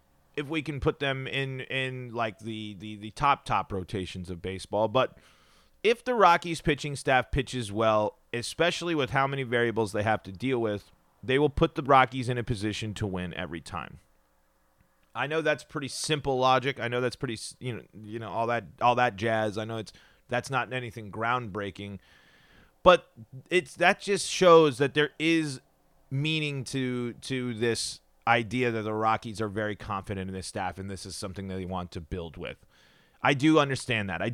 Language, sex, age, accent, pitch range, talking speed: English, male, 30-49, American, 110-140 Hz, 190 wpm